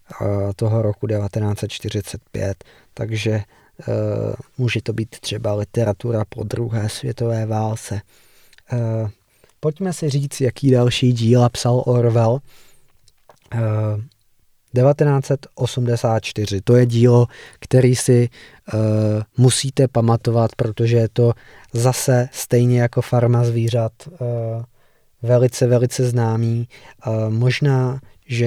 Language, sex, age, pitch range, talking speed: Czech, male, 20-39, 110-125 Hz, 90 wpm